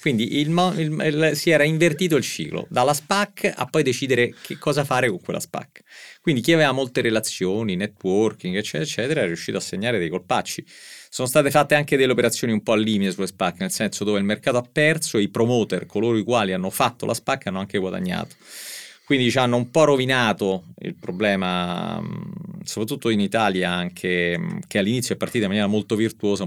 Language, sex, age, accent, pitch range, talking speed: Italian, male, 30-49, native, 105-155 Hz, 205 wpm